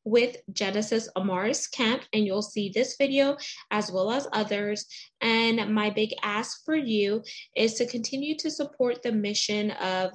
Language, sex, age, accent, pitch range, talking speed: English, female, 20-39, American, 200-240 Hz, 160 wpm